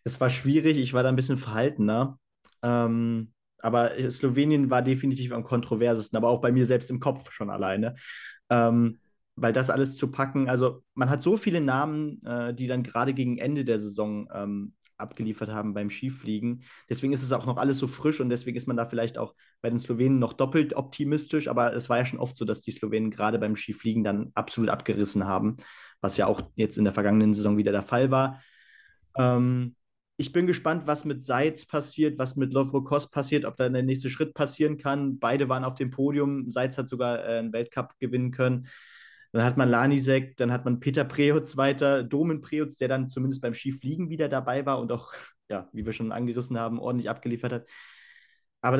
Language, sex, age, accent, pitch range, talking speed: German, male, 30-49, German, 120-140 Hz, 200 wpm